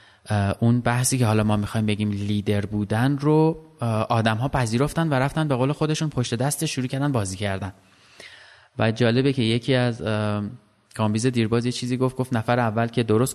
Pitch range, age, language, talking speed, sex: 110-140 Hz, 20-39, Persian, 180 wpm, male